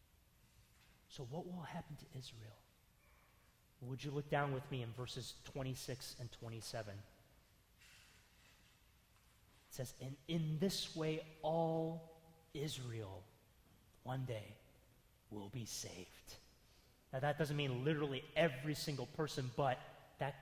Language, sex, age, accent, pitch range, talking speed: English, male, 30-49, American, 125-200 Hz, 120 wpm